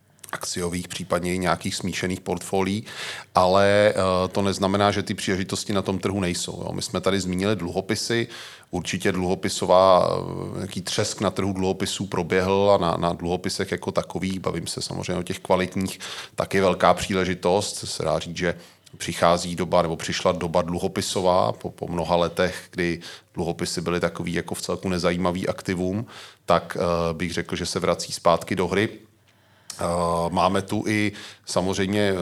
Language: Czech